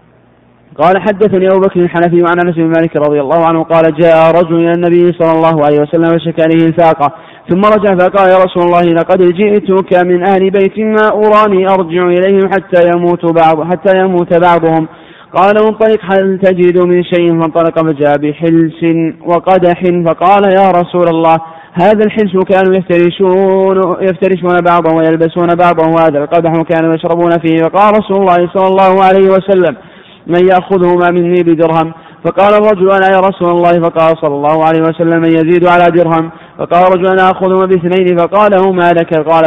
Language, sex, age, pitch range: Arabic, male, 30-49, 165-190 Hz